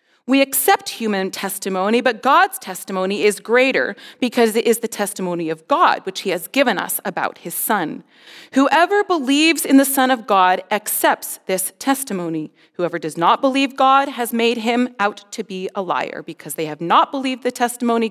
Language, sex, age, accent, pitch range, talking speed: English, female, 30-49, American, 190-265 Hz, 180 wpm